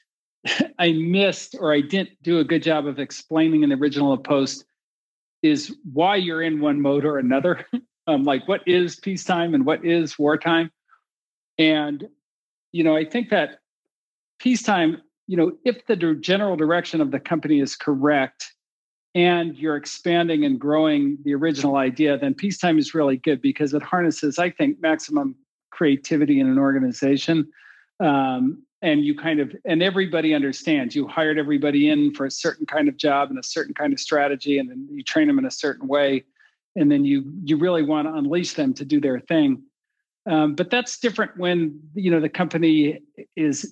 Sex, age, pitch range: male, 50-69, 145-185 Hz